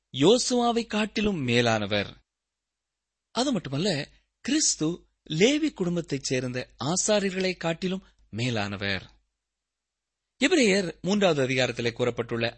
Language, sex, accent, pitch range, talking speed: Tamil, male, native, 125-195 Hz, 70 wpm